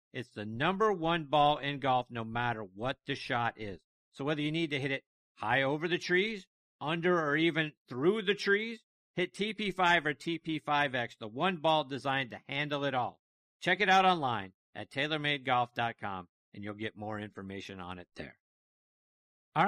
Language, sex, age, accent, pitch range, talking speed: English, male, 50-69, American, 115-155 Hz, 175 wpm